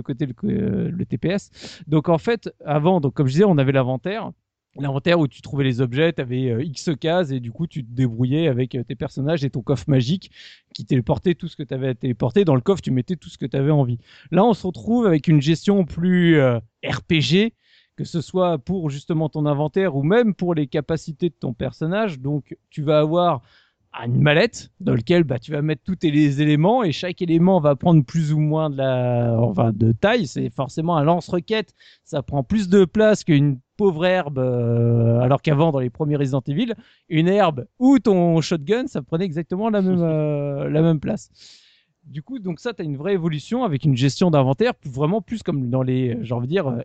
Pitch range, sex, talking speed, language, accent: 140-180 Hz, male, 215 wpm, French, French